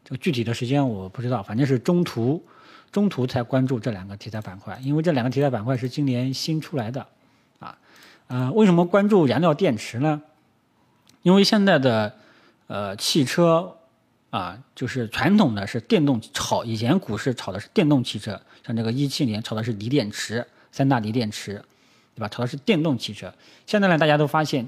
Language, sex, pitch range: Chinese, male, 115-150 Hz